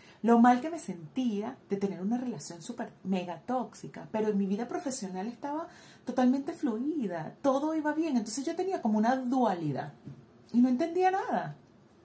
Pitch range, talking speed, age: 195-270 Hz, 165 wpm, 30-49